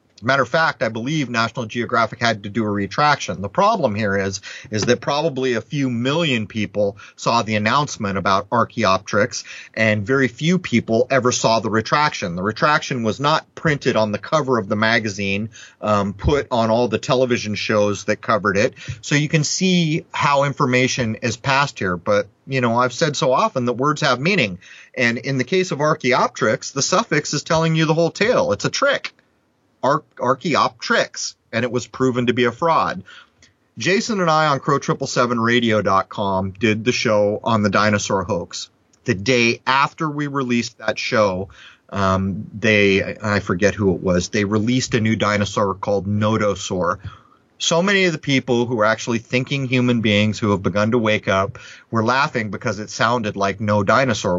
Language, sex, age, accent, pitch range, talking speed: English, male, 30-49, American, 105-135 Hz, 180 wpm